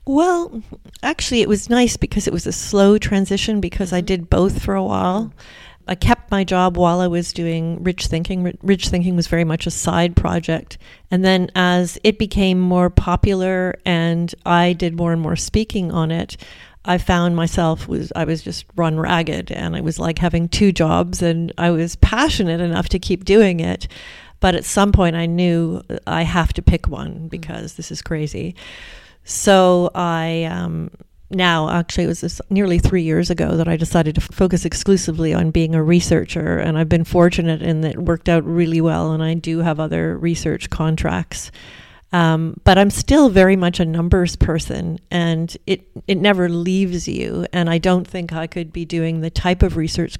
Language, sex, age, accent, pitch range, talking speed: English, female, 40-59, American, 165-185 Hz, 190 wpm